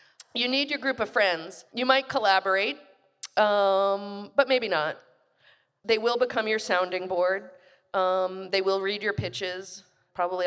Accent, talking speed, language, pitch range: American, 150 wpm, English, 180-235 Hz